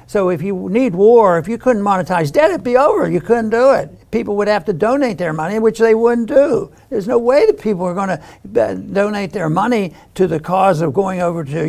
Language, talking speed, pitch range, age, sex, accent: English, 230 wpm, 170-215 Hz, 60-79, male, American